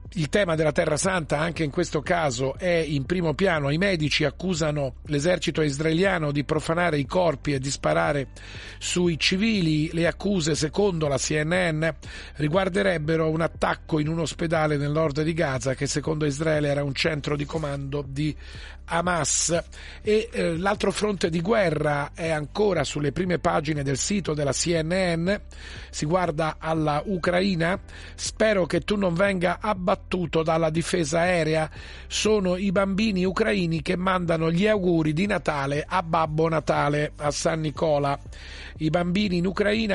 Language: Italian